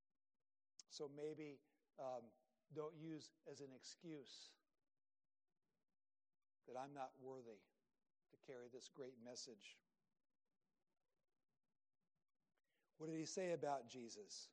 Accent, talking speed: American, 95 wpm